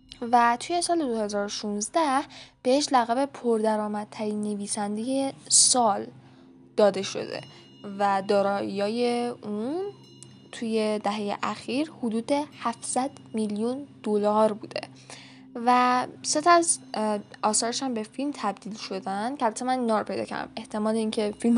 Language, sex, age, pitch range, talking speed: Persian, female, 10-29, 195-240 Hz, 110 wpm